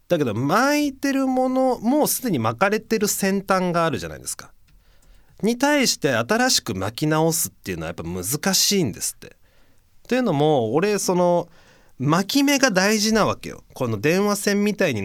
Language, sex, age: Japanese, male, 30-49